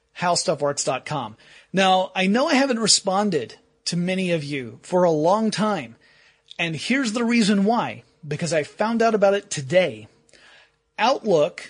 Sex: male